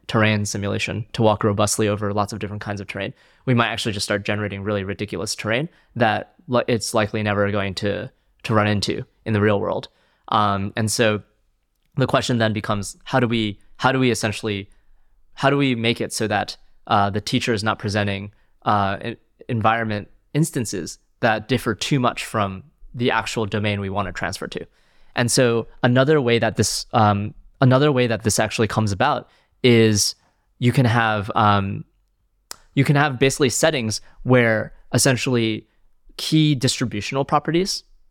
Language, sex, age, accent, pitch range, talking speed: English, male, 20-39, American, 105-125 Hz, 165 wpm